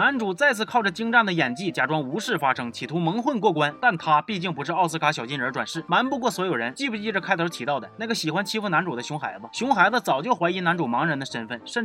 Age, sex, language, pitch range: 30-49, male, Chinese, 165-230 Hz